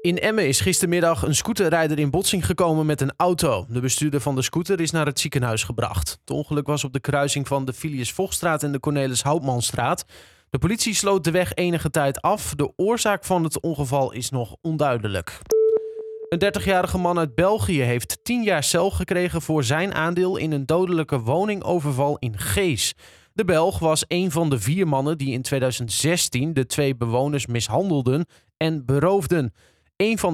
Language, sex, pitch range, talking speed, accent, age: Dutch, male, 140-185 Hz, 180 wpm, Dutch, 20-39